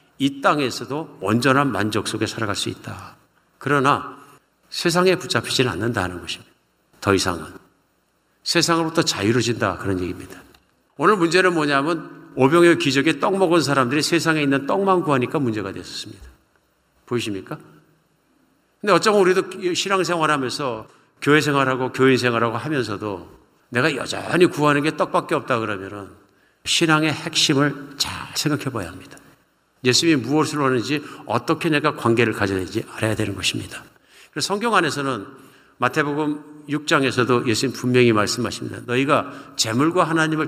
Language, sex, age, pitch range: Korean, male, 50-69, 115-160 Hz